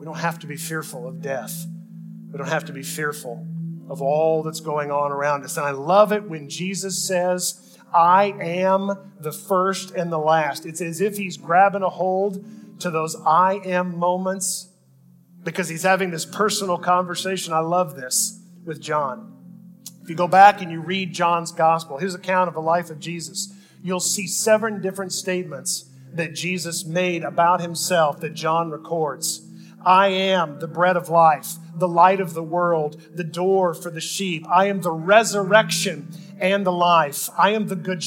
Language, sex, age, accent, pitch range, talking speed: English, male, 40-59, American, 165-190 Hz, 180 wpm